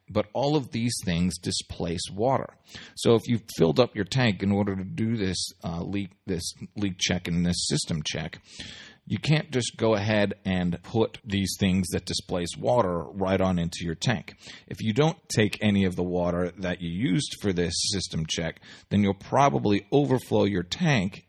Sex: male